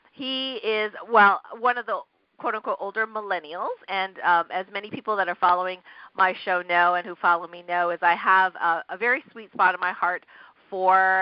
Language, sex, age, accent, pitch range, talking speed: English, female, 40-59, American, 175-220 Hz, 200 wpm